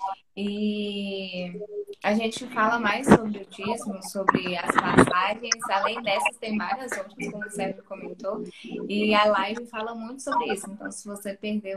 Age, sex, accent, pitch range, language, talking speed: 10-29, female, Brazilian, 195-240 Hz, Portuguese, 160 wpm